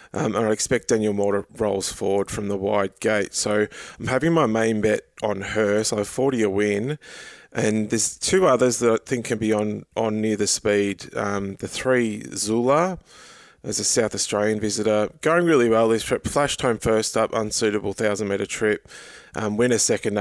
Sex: male